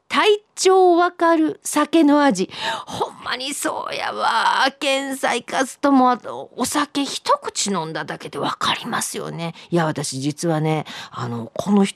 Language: Japanese